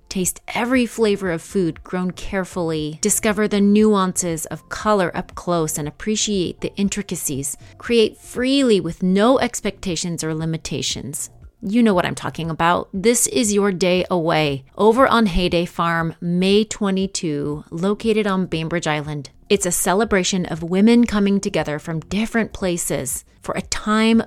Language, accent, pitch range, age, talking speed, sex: English, American, 165-215 Hz, 30-49, 145 wpm, female